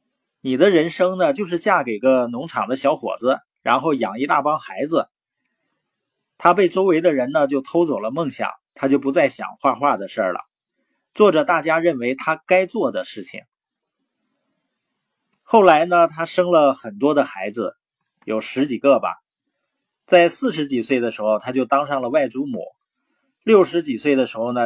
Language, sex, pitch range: Chinese, male, 135-195 Hz